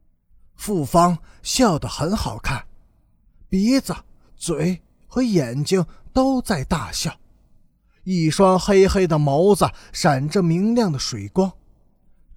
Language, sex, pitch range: Chinese, male, 125-205 Hz